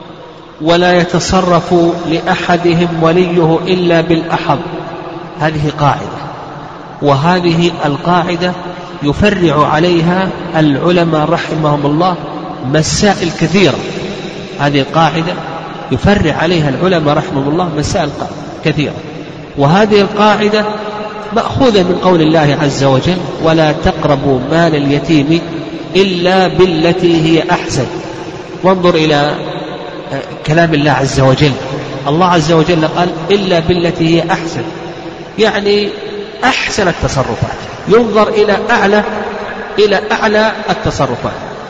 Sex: male